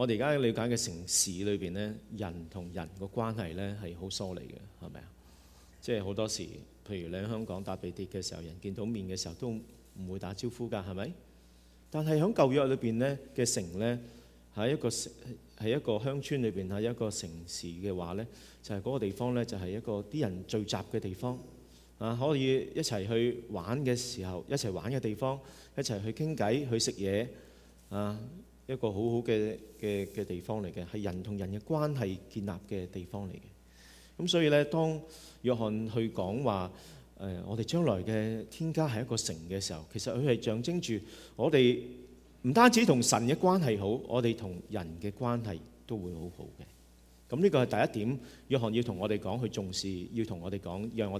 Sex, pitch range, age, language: male, 90-120 Hz, 40-59, Chinese